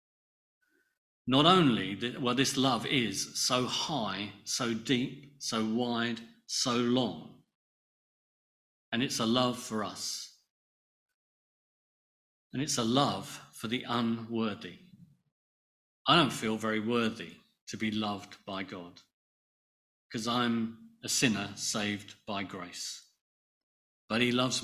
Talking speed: 115 wpm